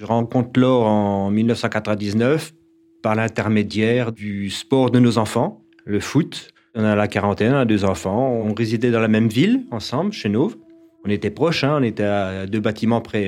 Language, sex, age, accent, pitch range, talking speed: French, male, 30-49, French, 105-125 Hz, 185 wpm